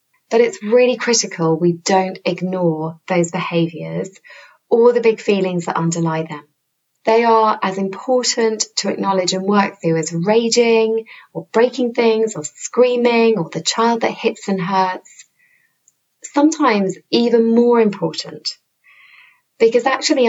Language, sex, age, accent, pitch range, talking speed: English, female, 20-39, British, 175-235 Hz, 135 wpm